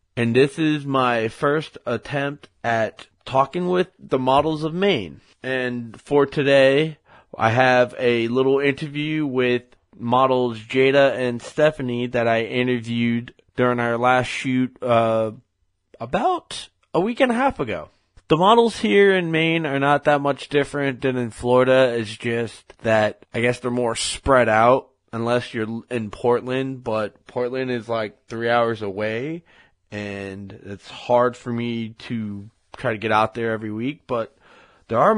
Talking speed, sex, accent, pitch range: 155 wpm, male, American, 115-140 Hz